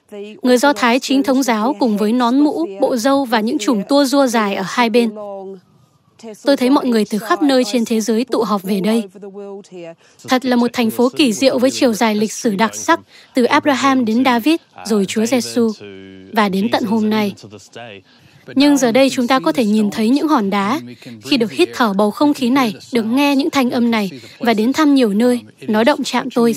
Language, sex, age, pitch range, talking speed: Vietnamese, female, 20-39, 210-260 Hz, 215 wpm